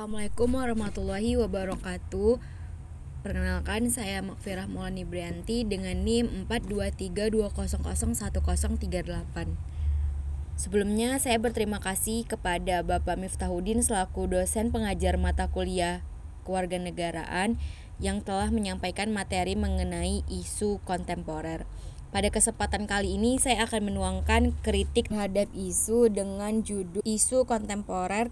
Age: 20-39